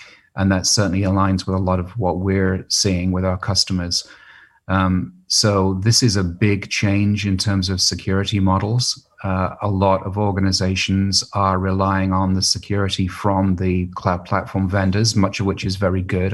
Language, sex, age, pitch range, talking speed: English, male, 30-49, 95-100 Hz, 175 wpm